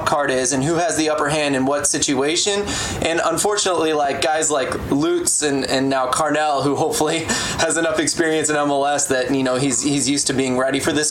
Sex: male